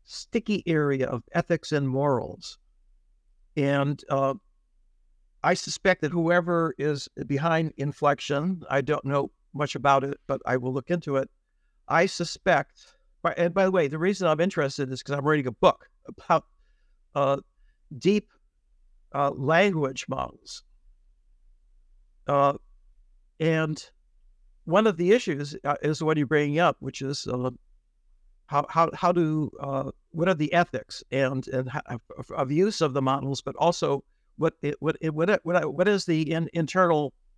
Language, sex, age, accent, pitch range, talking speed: English, male, 60-79, American, 135-170 Hz, 155 wpm